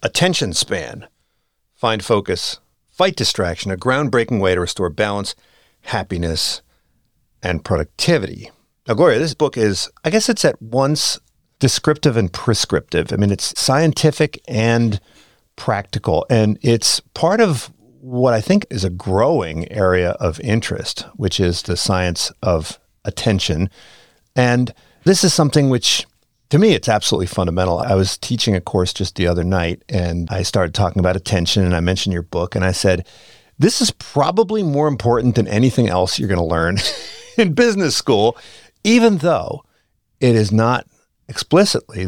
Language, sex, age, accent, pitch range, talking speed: English, male, 50-69, American, 95-140 Hz, 155 wpm